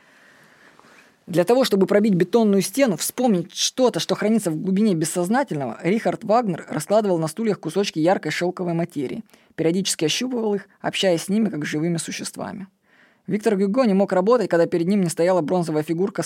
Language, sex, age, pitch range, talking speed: Russian, female, 20-39, 165-210 Hz, 160 wpm